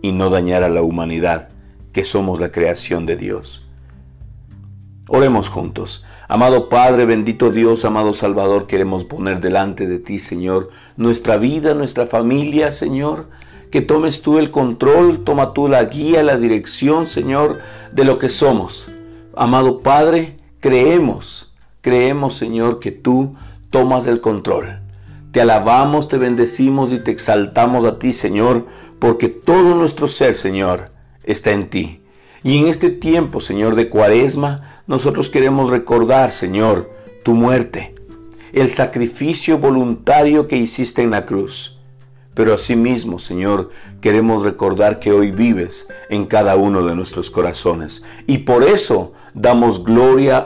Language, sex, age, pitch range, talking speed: Spanish, male, 50-69, 100-130 Hz, 135 wpm